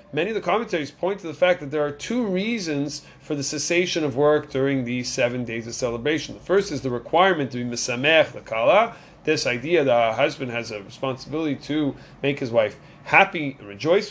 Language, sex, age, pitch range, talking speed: English, male, 30-49, 135-170 Hz, 205 wpm